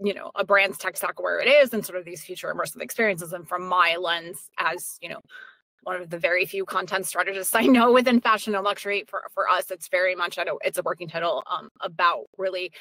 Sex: female